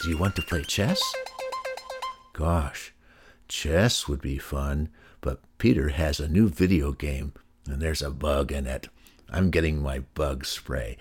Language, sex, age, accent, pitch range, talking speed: English, male, 60-79, American, 75-110 Hz, 160 wpm